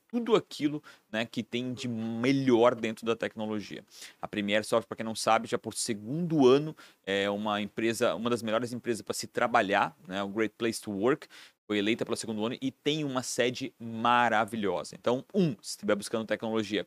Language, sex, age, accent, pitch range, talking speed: Portuguese, male, 30-49, Brazilian, 110-135 Hz, 190 wpm